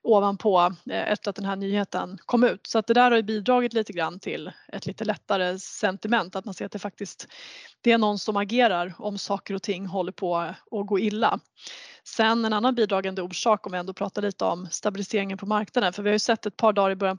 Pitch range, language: 195-225 Hz, Swedish